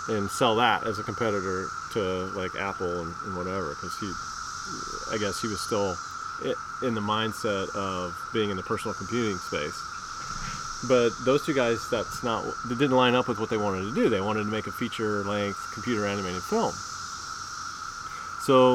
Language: English